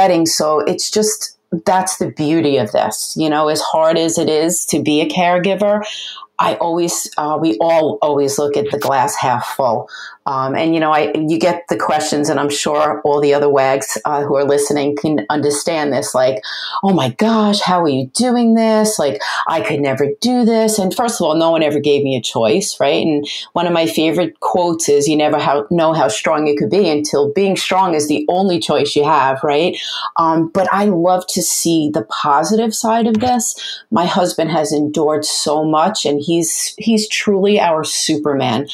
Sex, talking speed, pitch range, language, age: female, 200 wpm, 145-180 Hz, English, 30-49